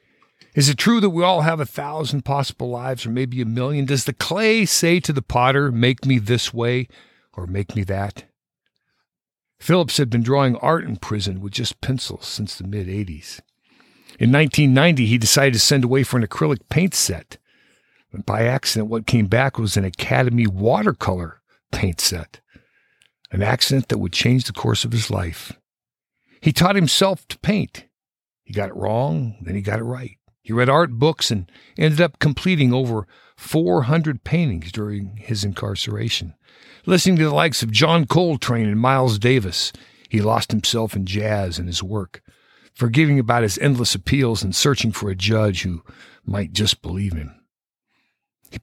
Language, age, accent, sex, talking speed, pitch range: English, 50-69, American, male, 170 wpm, 105-140 Hz